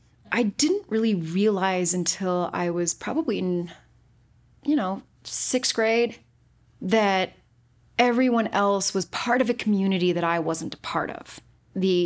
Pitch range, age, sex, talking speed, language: 175-240 Hz, 30-49, female, 140 wpm, English